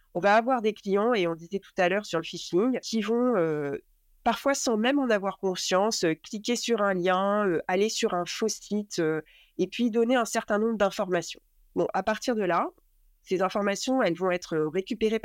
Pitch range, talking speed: 185-230 Hz, 205 wpm